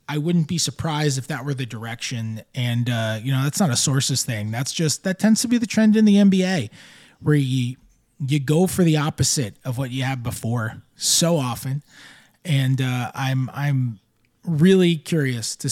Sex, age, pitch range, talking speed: male, 20-39, 125-165 Hz, 190 wpm